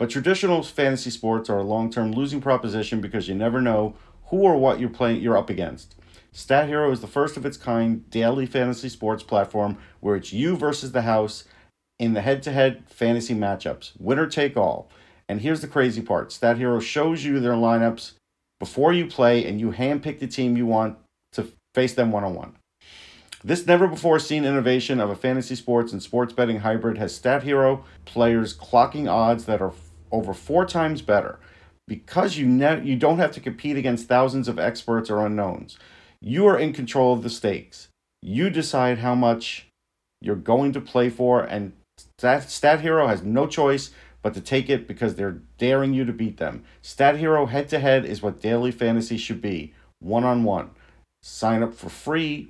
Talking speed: 185 wpm